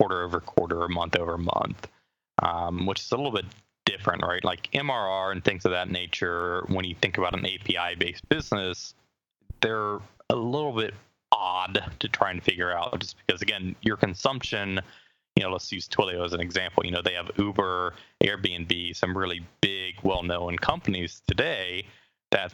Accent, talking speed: American, 170 wpm